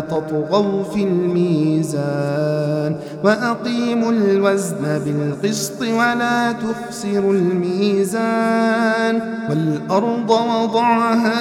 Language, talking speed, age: Arabic, 65 wpm, 50-69